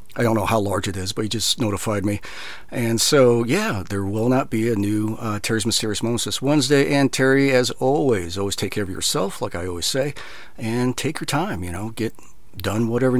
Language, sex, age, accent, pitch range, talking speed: English, male, 40-59, American, 105-130 Hz, 225 wpm